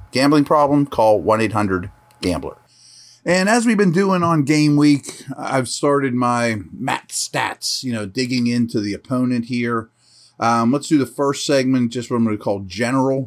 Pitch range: 110-135 Hz